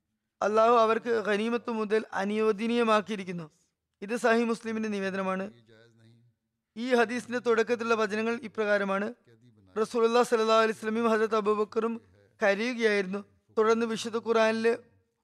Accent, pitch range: native, 205-230 Hz